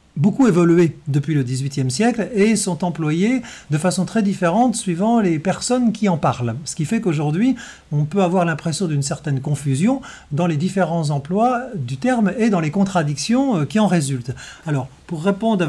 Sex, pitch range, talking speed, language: male, 145-200 Hz, 180 wpm, French